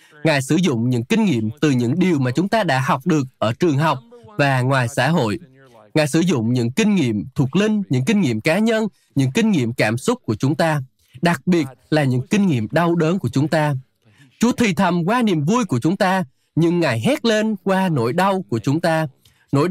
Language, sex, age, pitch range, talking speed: Vietnamese, male, 20-39, 140-210 Hz, 225 wpm